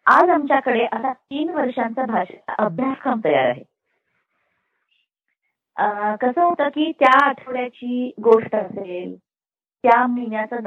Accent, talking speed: native, 100 wpm